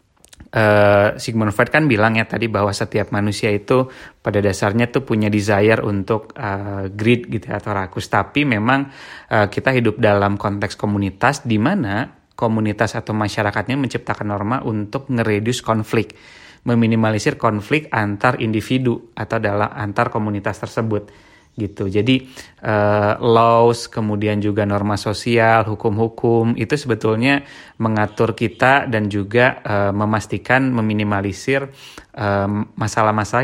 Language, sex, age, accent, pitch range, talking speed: Indonesian, male, 30-49, native, 105-120 Hz, 125 wpm